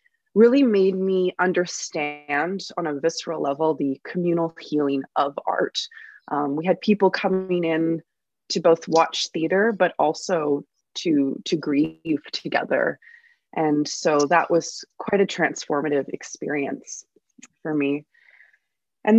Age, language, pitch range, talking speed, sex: 20-39, English, 165-195 Hz, 125 wpm, female